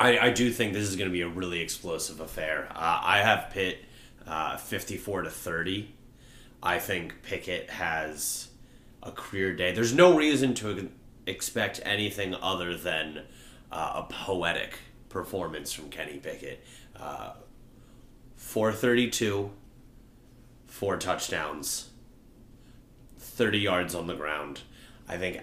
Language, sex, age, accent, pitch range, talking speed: English, male, 30-49, American, 85-120 Hz, 125 wpm